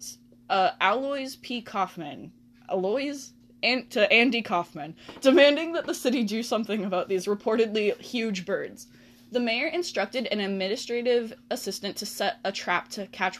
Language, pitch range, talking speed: English, 185-240 Hz, 140 wpm